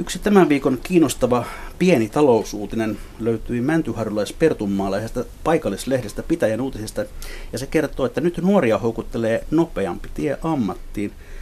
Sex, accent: male, native